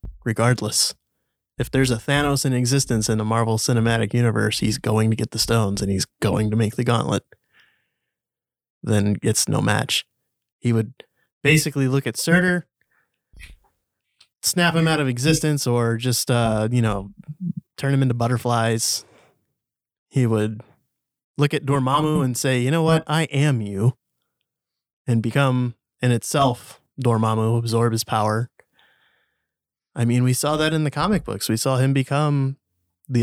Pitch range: 110-135 Hz